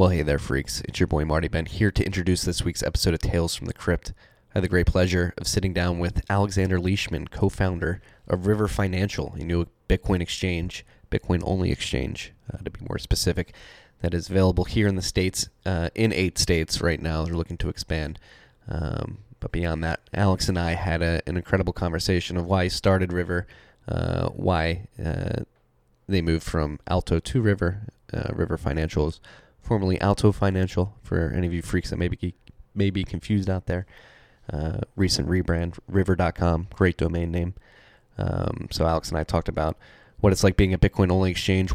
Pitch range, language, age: 85-95 Hz, English, 20-39